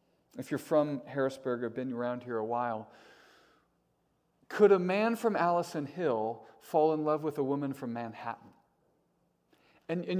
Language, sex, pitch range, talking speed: English, male, 135-185 Hz, 155 wpm